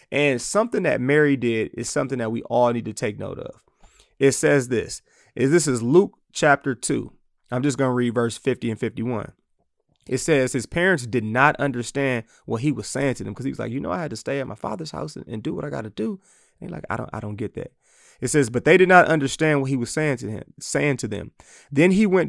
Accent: American